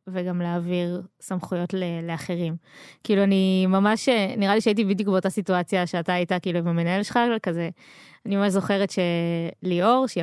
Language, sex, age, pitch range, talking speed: Hebrew, female, 20-39, 180-230 Hz, 145 wpm